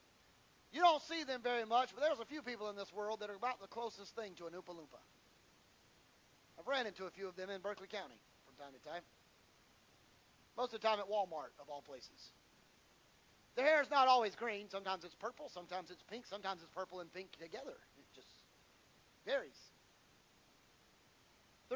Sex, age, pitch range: male, 40-59, 205-275 Hz